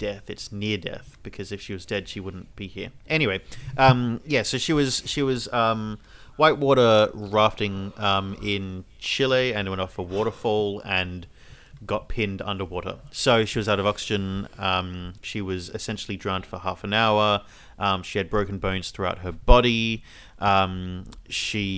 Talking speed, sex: 170 wpm, male